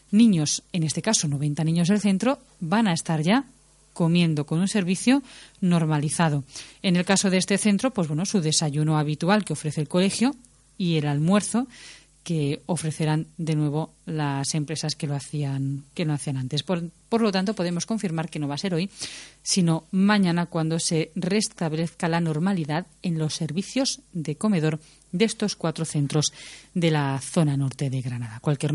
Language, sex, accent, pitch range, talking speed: Spanish, female, Spanish, 150-195 Hz, 170 wpm